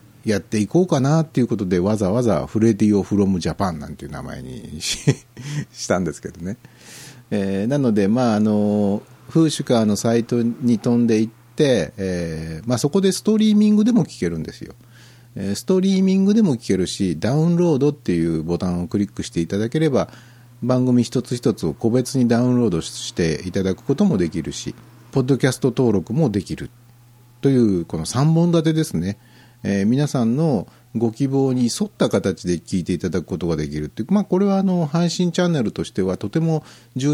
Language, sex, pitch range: Japanese, male, 100-135 Hz